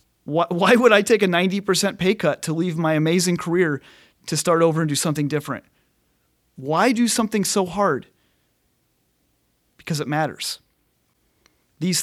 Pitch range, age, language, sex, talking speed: 140-185 Hz, 30-49, English, male, 150 wpm